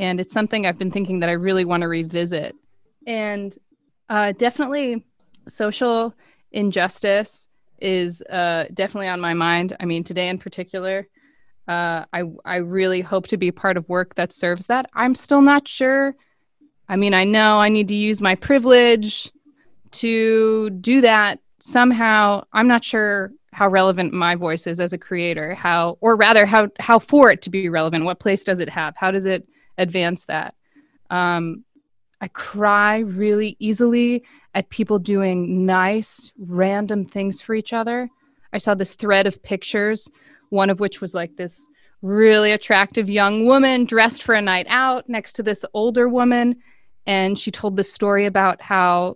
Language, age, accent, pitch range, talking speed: English, 20-39, American, 185-225 Hz, 170 wpm